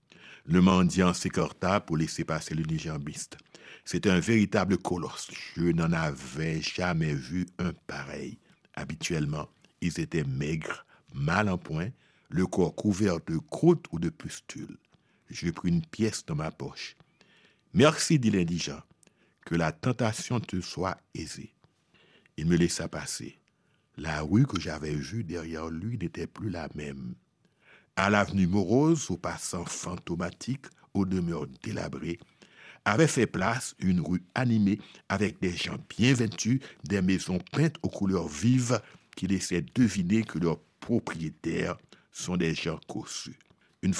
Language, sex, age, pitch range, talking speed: French, male, 60-79, 85-115 Hz, 145 wpm